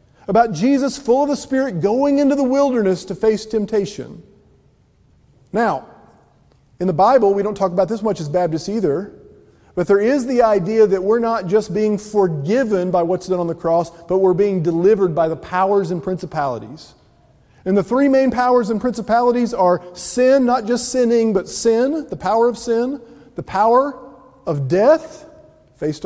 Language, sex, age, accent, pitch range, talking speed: English, male, 40-59, American, 175-235 Hz, 175 wpm